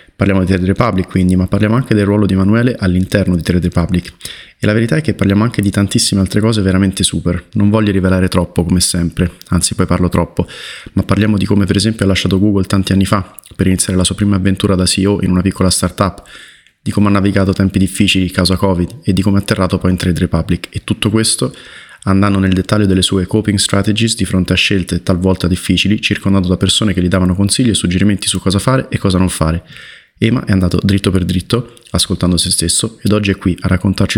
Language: Italian